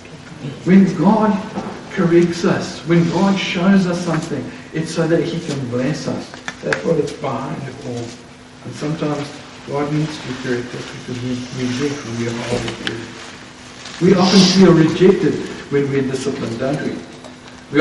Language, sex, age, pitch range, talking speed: English, male, 60-79, 125-165 Hz, 160 wpm